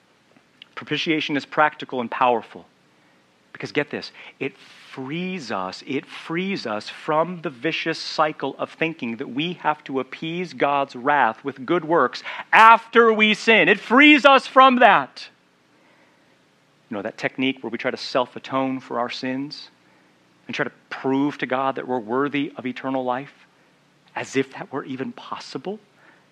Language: English